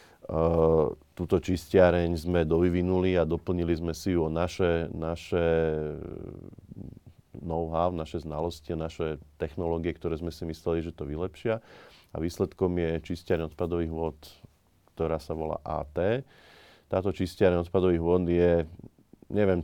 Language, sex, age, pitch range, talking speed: Slovak, male, 30-49, 80-90 Hz, 125 wpm